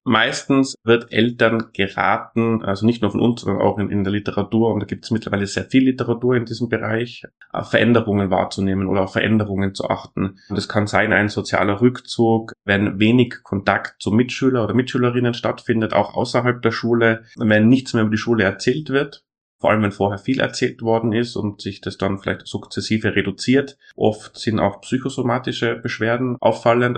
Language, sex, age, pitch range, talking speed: German, male, 30-49, 100-120 Hz, 180 wpm